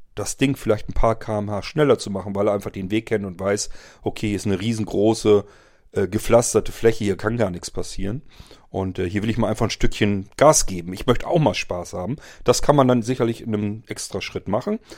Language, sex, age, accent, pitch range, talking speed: German, male, 40-59, German, 105-135 Hz, 230 wpm